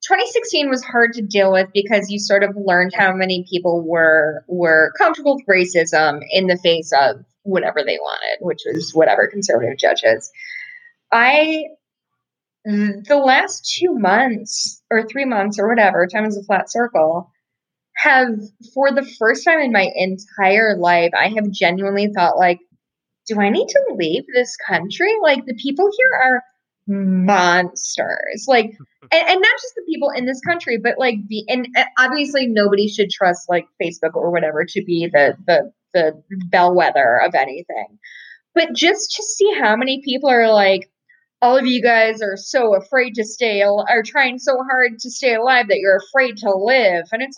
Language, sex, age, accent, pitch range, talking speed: English, female, 20-39, American, 195-275 Hz, 170 wpm